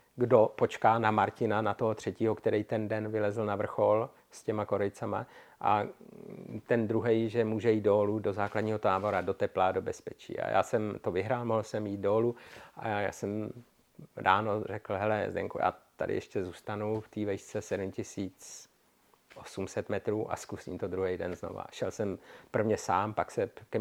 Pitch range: 100-115 Hz